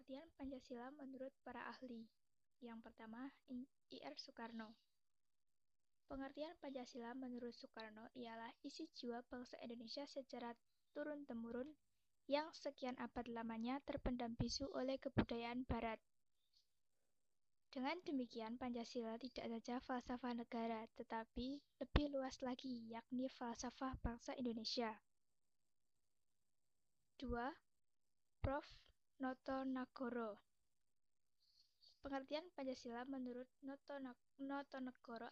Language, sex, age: Indonesian, female, 20-39